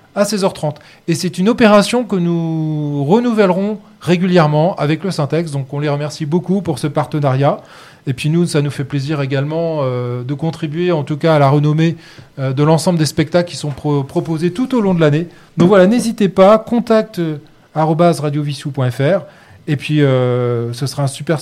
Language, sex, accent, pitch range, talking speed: French, male, French, 150-180 Hz, 180 wpm